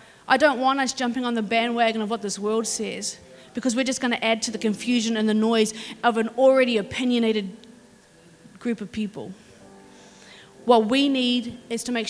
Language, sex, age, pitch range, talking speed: English, female, 30-49, 220-265 Hz, 185 wpm